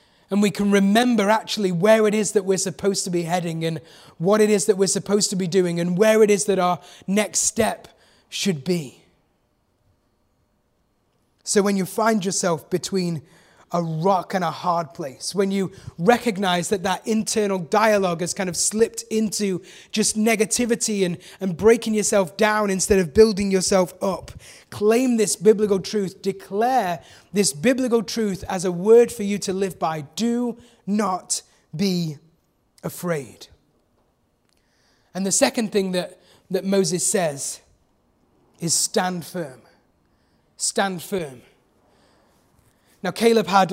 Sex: male